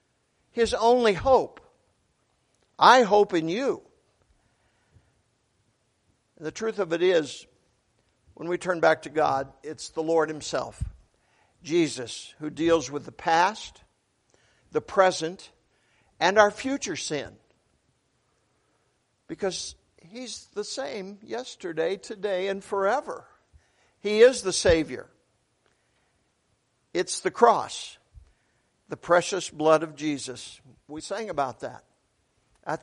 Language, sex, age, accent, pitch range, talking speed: English, male, 60-79, American, 130-185 Hz, 110 wpm